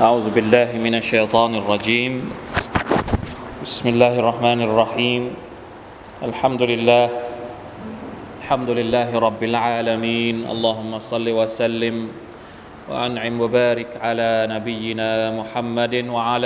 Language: Thai